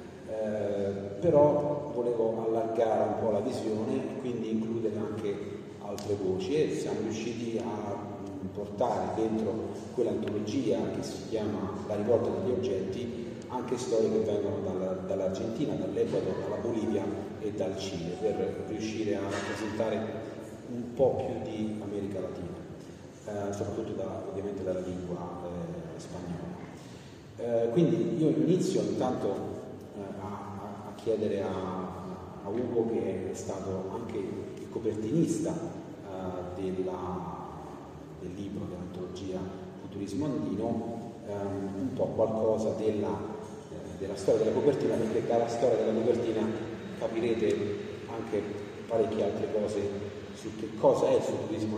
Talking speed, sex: 125 wpm, male